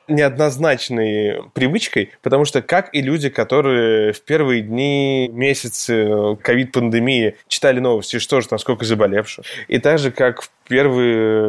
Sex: male